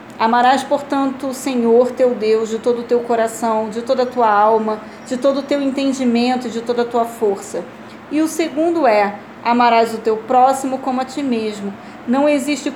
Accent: Brazilian